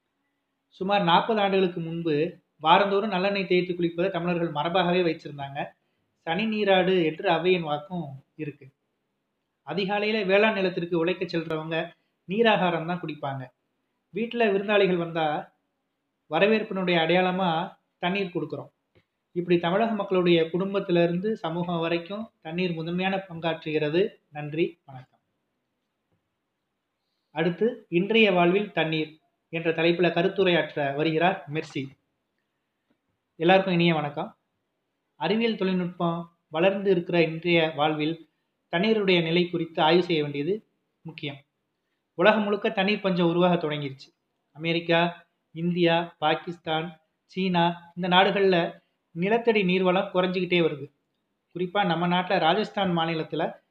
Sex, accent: male, native